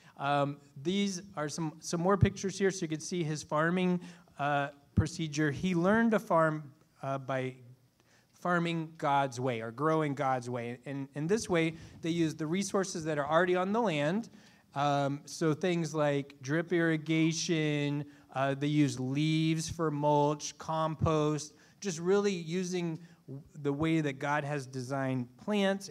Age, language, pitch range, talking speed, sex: 20-39, English, 140-175 Hz, 155 wpm, male